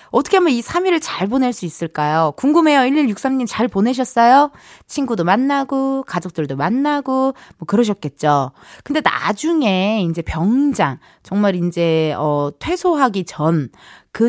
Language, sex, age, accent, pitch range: Korean, female, 20-39, native, 190-290 Hz